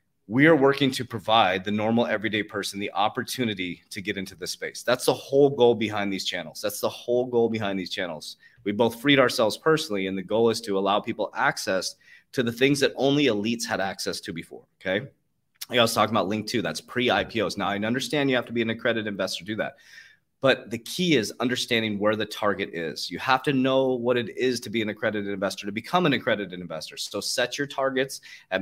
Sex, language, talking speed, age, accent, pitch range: male, English, 225 wpm, 30-49, American, 100-130 Hz